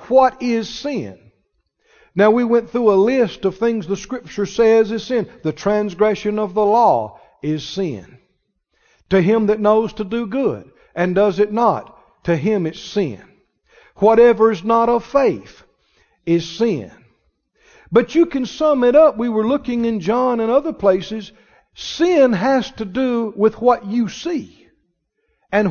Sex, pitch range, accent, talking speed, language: male, 195-235 Hz, American, 160 wpm, English